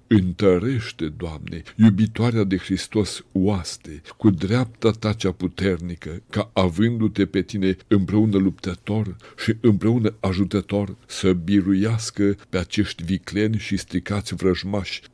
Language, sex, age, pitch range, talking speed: Romanian, male, 60-79, 90-110 Hz, 110 wpm